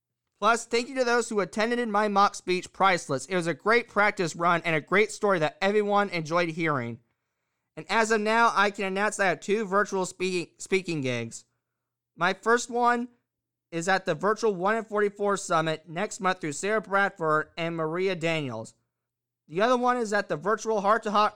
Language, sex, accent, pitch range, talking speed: English, male, American, 160-215 Hz, 195 wpm